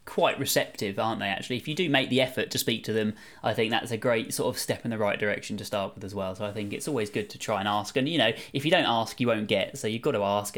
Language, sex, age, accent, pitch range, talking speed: English, male, 20-39, British, 105-130 Hz, 325 wpm